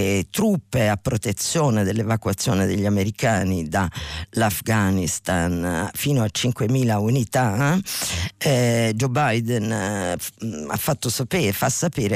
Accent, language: native, Italian